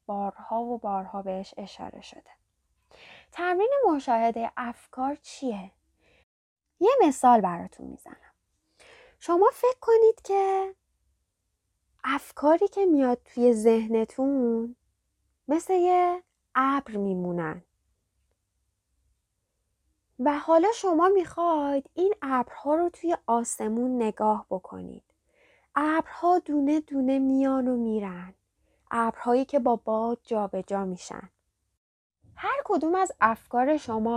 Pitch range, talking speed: 225-300 Hz, 95 wpm